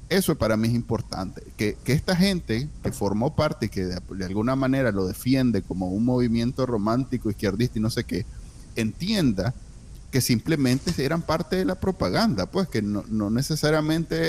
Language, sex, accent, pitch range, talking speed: Spanish, male, Venezuelan, 110-150 Hz, 175 wpm